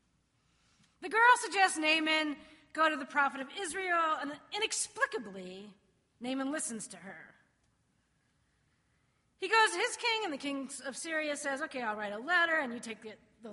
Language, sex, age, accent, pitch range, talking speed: English, female, 40-59, American, 235-340 Hz, 160 wpm